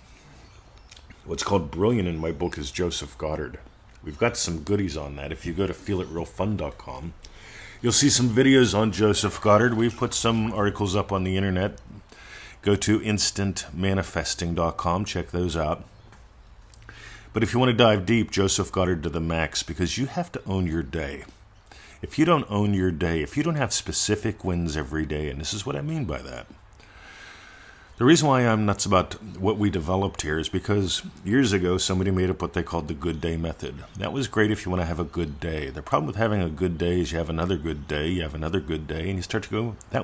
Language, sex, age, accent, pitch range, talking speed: English, male, 50-69, American, 85-110 Hz, 210 wpm